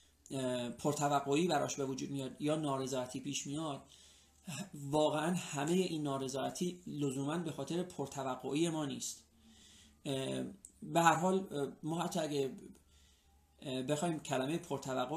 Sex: male